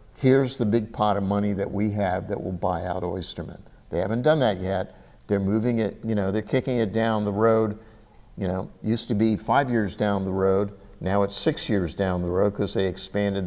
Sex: male